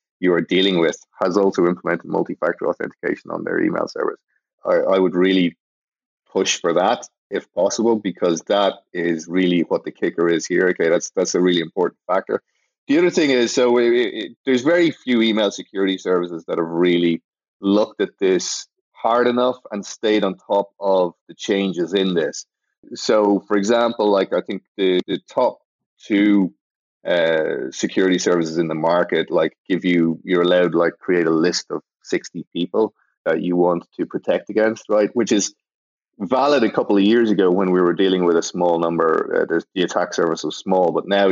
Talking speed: 185 wpm